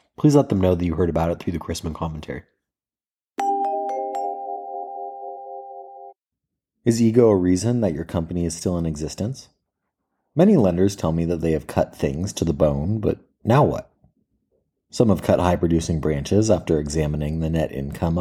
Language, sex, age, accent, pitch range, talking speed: English, male, 30-49, American, 80-95 Hz, 160 wpm